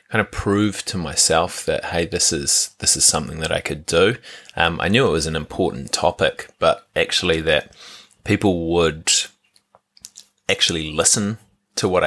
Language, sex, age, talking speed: English, male, 20-39, 165 wpm